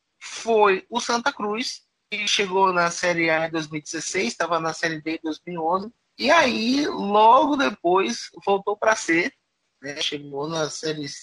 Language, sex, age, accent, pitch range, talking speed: Portuguese, male, 20-39, Brazilian, 160-205 Hz, 155 wpm